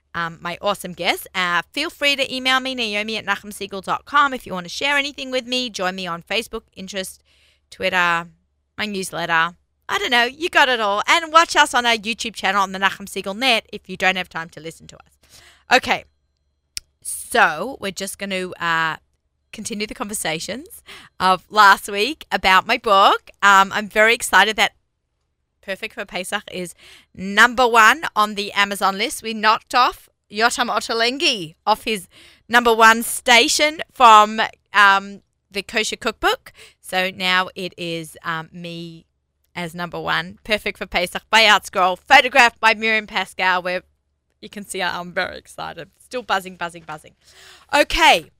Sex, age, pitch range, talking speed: female, 30-49, 180-235 Hz, 165 wpm